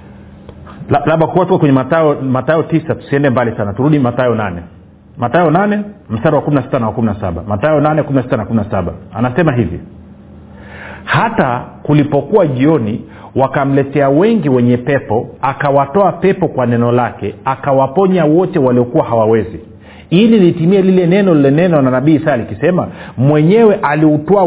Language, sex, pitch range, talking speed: Swahili, male, 120-155 Hz, 145 wpm